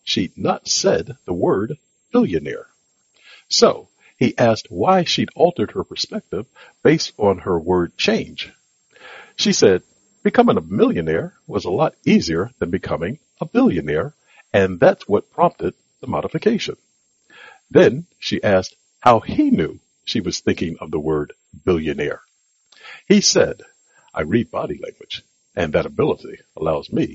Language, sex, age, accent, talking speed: English, male, 60-79, American, 135 wpm